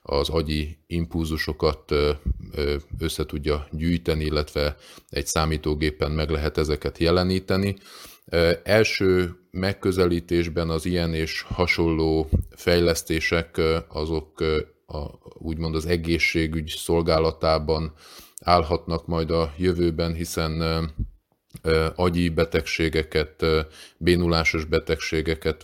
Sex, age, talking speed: male, 30-49, 80 wpm